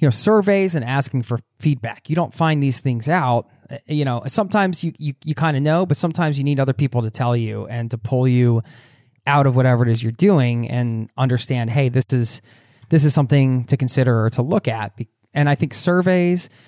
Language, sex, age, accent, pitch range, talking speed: English, male, 20-39, American, 120-145 Hz, 215 wpm